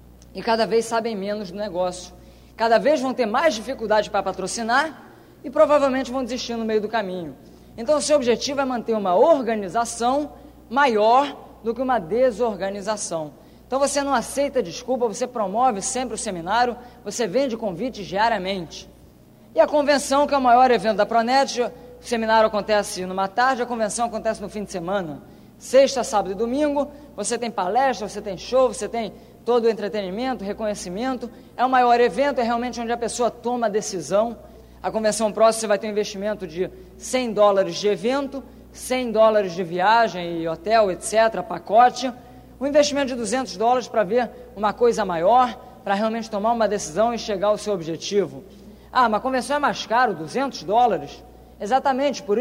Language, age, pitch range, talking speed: English, 20-39, 205-255 Hz, 175 wpm